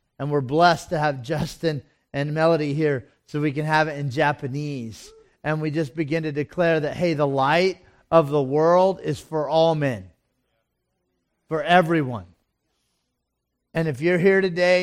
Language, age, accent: English, 40-59, American